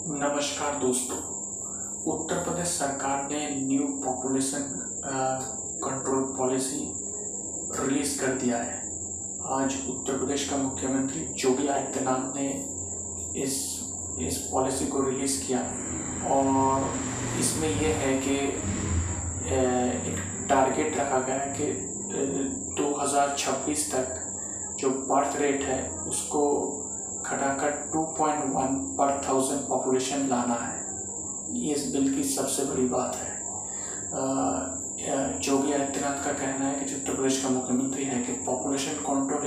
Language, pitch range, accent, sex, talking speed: Hindi, 125-140 Hz, native, male, 115 wpm